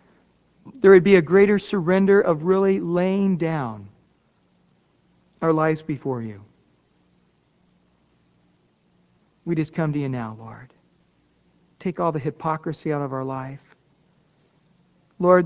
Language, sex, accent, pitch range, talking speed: English, male, American, 135-185 Hz, 115 wpm